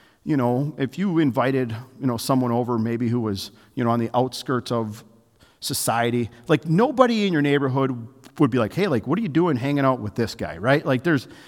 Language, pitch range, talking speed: English, 120-160 Hz, 215 wpm